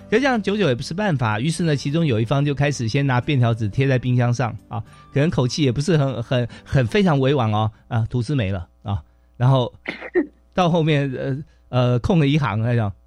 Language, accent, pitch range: Chinese, native, 115-160 Hz